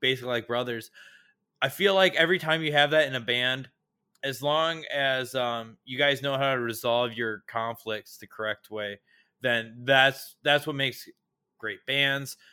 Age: 20-39